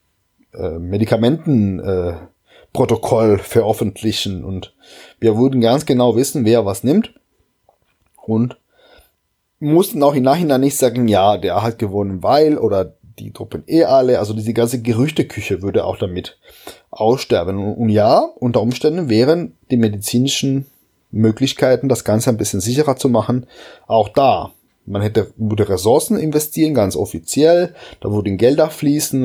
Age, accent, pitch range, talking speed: 20-39, German, 105-140 Hz, 135 wpm